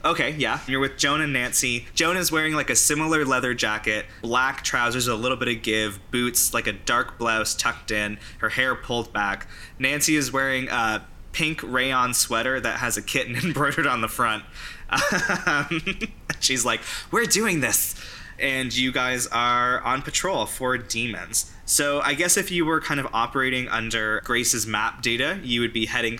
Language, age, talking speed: English, 20-39, 180 wpm